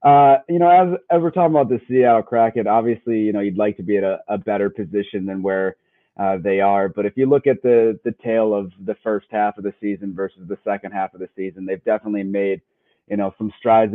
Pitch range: 100-115 Hz